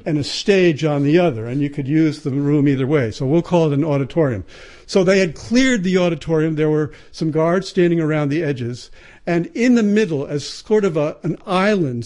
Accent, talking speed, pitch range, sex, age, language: American, 220 wpm, 145-185 Hz, male, 60-79, English